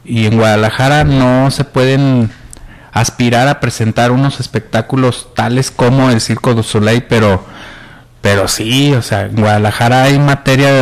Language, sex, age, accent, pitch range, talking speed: Spanish, male, 50-69, Mexican, 115-140 Hz, 150 wpm